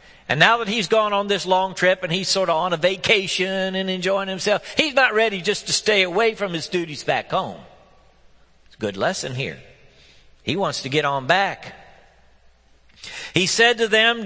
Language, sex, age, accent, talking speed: English, male, 50-69, American, 195 wpm